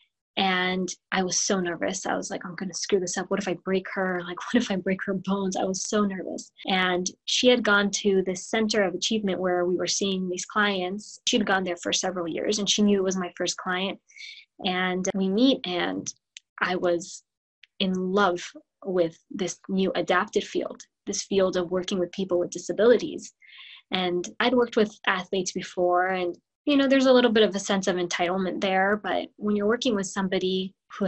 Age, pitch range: 20-39, 180-210 Hz